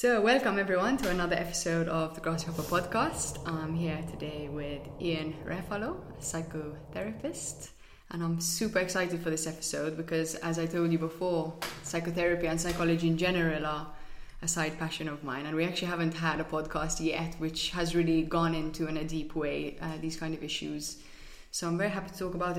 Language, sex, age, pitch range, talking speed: English, female, 20-39, 155-175 Hz, 190 wpm